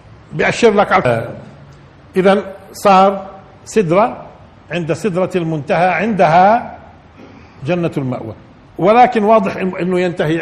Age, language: 50-69, Arabic